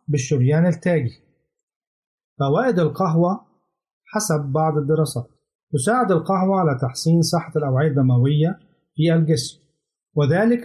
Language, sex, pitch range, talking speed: Arabic, male, 145-180 Hz, 95 wpm